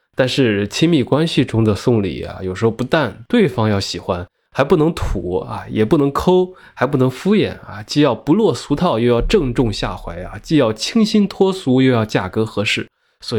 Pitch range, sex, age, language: 105-135 Hz, male, 20-39, Chinese